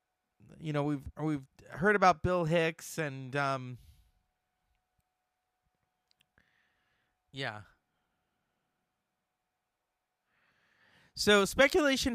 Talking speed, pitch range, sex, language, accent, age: 65 wpm, 135-180 Hz, male, English, American, 30-49